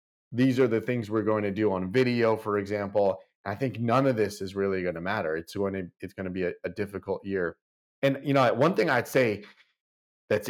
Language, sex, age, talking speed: English, male, 30-49, 235 wpm